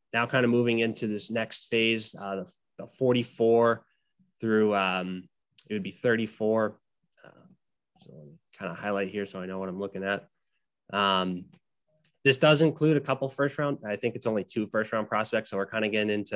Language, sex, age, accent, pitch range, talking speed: English, male, 20-39, American, 105-120 Hz, 195 wpm